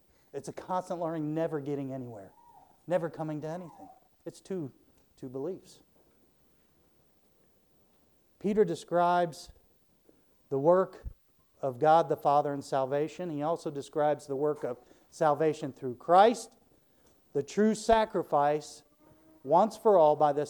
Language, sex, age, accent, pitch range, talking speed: English, male, 50-69, American, 135-175 Hz, 125 wpm